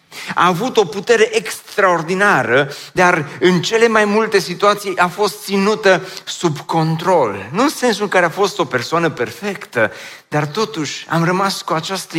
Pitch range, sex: 120-180 Hz, male